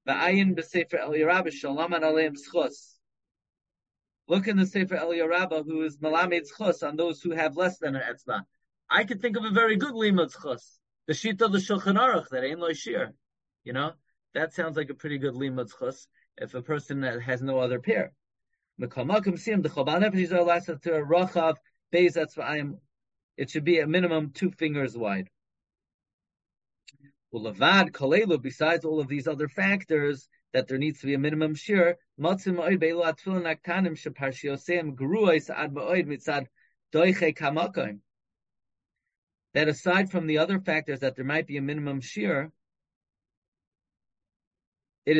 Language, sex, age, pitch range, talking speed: English, male, 40-59, 140-175 Hz, 120 wpm